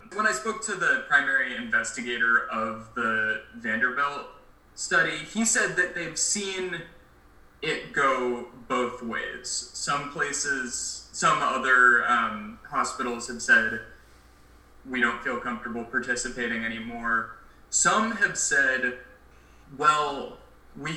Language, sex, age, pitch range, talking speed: English, male, 20-39, 110-150 Hz, 110 wpm